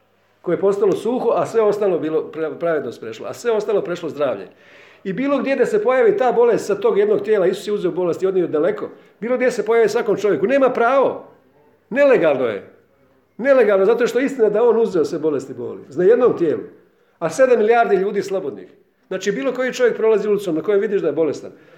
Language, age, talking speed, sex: Croatian, 50-69, 210 wpm, male